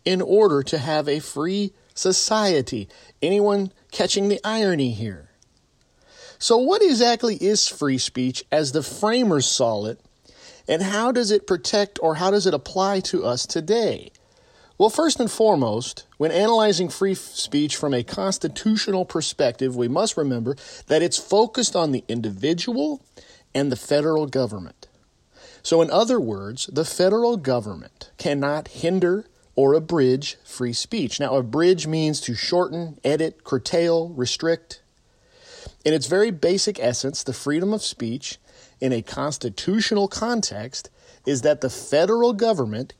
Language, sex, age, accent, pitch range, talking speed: English, male, 40-59, American, 135-205 Hz, 140 wpm